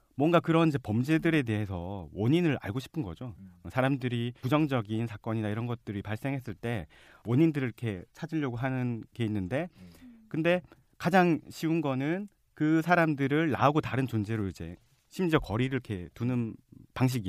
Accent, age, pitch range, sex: native, 40-59, 110-145 Hz, male